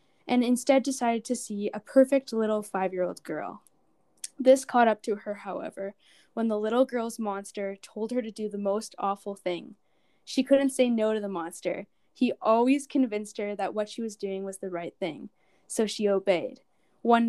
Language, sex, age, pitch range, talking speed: English, female, 10-29, 200-240 Hz, 185 wpm